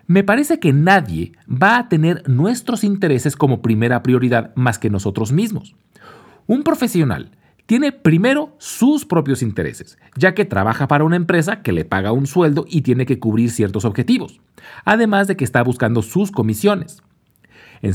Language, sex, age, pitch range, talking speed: Spanish, male, 40-59, 115-185 Hz, 160 wpm